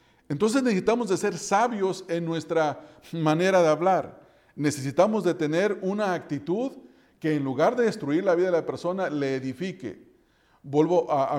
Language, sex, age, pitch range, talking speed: English, male, 40-59, 145-190 Hz, 160 wpm